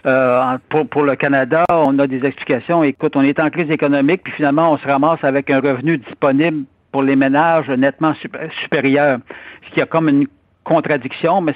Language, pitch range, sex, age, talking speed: French, 135-160 Hz, male, 60-79, 185 wpm